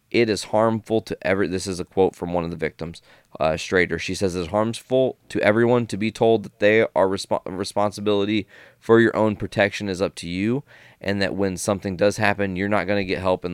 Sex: male